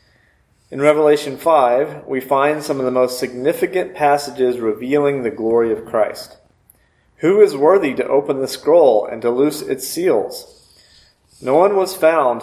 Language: English